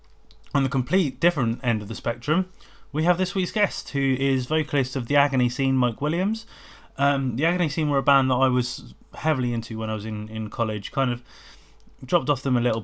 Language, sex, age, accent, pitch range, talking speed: English, male, 20-39, British, 115-140 Hz, 220 wpm